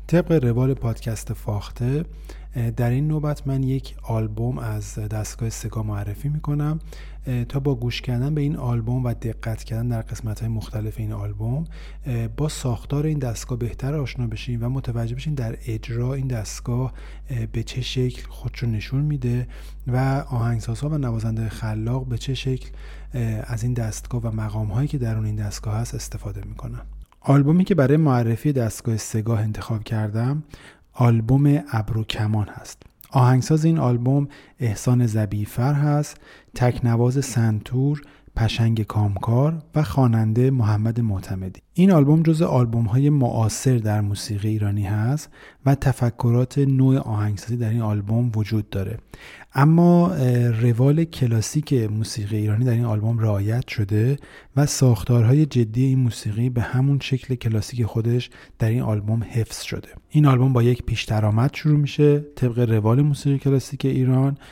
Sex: male